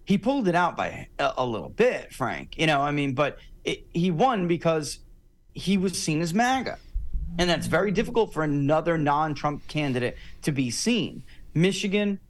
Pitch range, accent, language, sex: 130-185 Hz, American, English, male